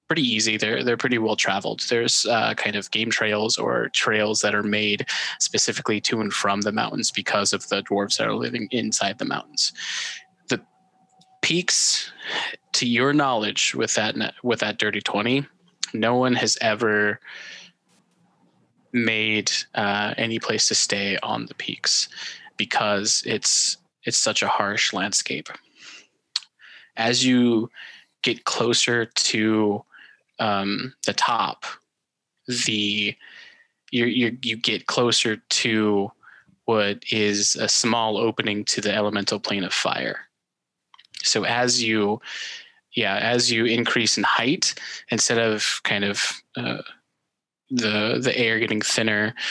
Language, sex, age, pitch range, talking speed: English, male, 20-39, 105-125 Hz, 130 wpm